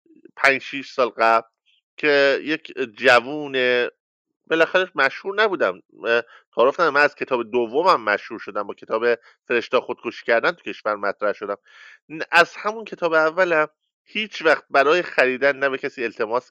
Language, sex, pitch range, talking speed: English, male, 125-185 Hz, 140 wpm